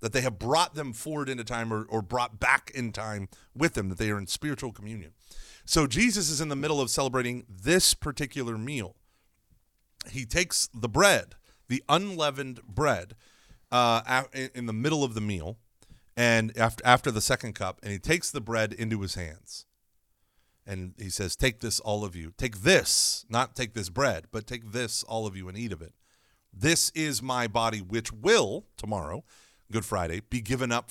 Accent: American